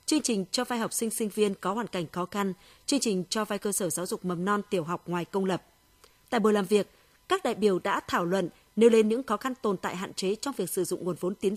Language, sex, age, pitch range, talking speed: Vietnamese, female, 20-39, 190-230 Hz, 280 wpm